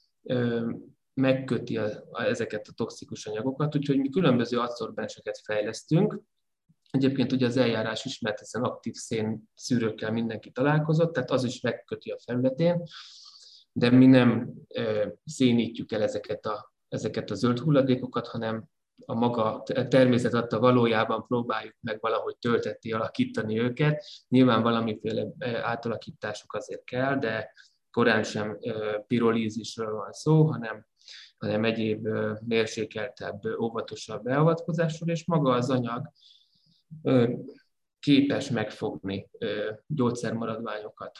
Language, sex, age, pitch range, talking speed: Hungarian, male, 20-39, 110-135 Hz, 110 wpm